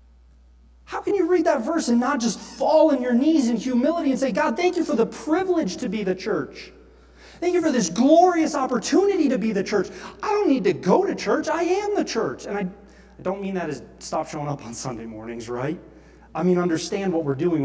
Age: 30-49